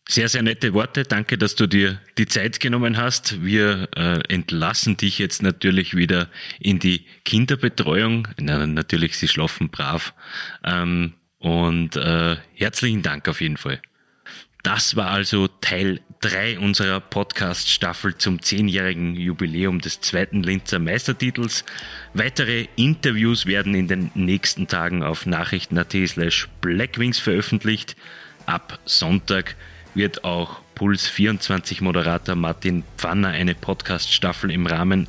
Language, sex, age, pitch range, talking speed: German, male, 30-49, 90-110 Hz, 125 wpm